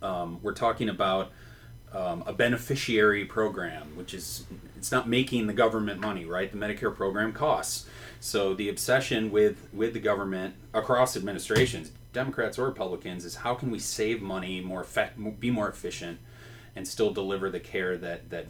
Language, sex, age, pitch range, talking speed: English, male, 30-49, 95-115 Hz, 160 wpm